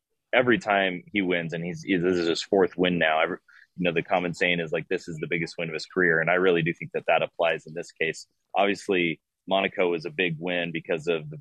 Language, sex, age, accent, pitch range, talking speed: English, male, 20-39, American, 85-95 Hz, 250 wpm